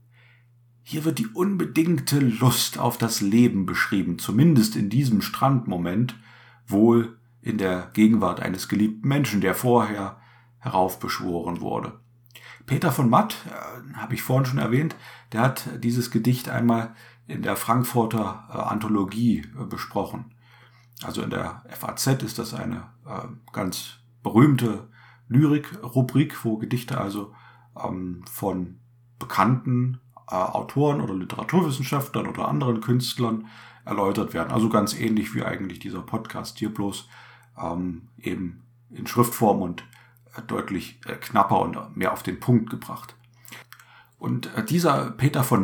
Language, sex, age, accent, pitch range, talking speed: German, male, 50-69, German, 110-125 Hz, 125 wpm